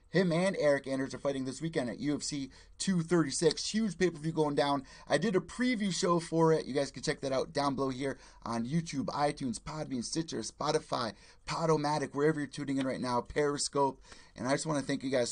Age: 30-49